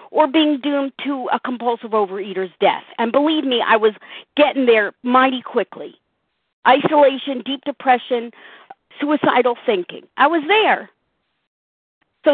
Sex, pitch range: female, 260-365 Hz